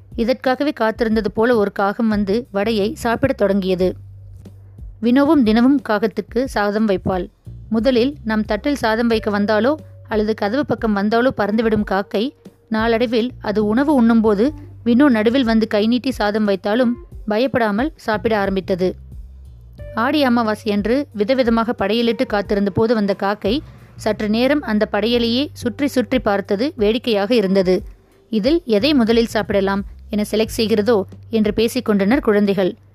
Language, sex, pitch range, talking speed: Tamil, female, 200-240 Hz, 120 wpm